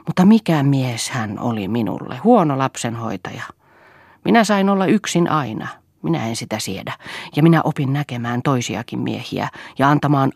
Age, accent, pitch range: 40-59, native, 120-155 Hz